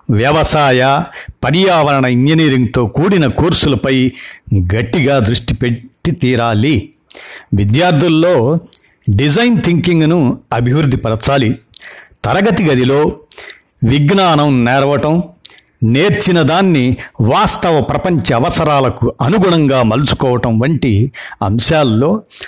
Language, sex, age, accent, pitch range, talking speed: Telugu, male, 60-79, native, 115-145 Hz, 70 wpm